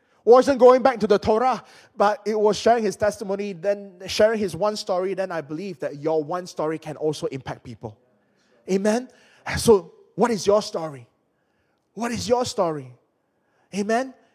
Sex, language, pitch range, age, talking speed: male, English, 180-235 Hz, 20-39, 165 wpm